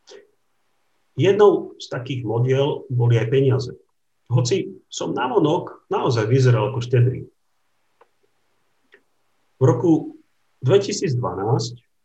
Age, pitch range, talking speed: 50-69, 120-155 Hz, 90 wpm